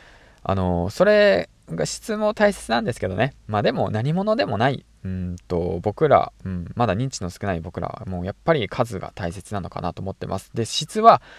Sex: male